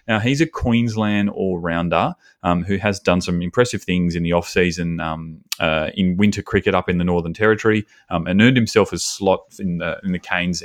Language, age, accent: English, 30-49, Australian